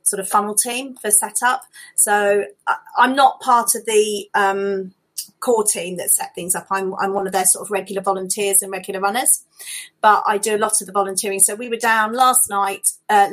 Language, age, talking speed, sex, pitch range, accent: English, 30-49, 205 wpm, female, 200-230 Hz, British